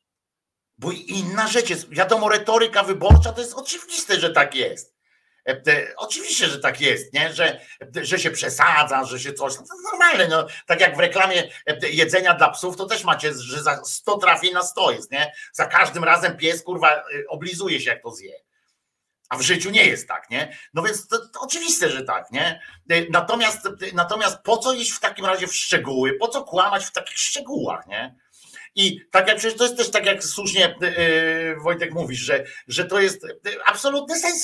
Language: Polish